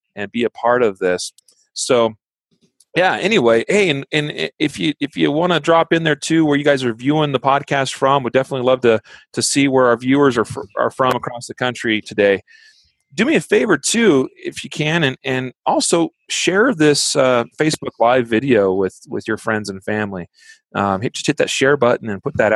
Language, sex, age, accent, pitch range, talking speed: English, male, 30-49, American, 115-155 Hz, 215 wpm